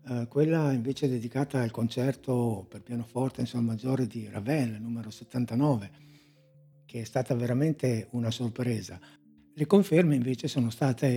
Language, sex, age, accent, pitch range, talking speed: Italian, male, 60-79, native, 115-145 Hz, 140 wpm